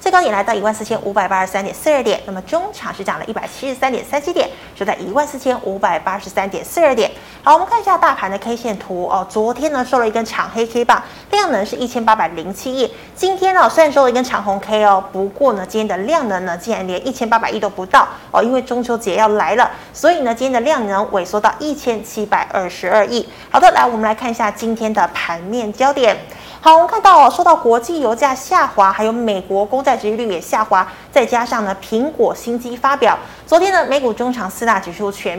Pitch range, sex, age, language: 205-280 Hz, female, 20-39, Chinese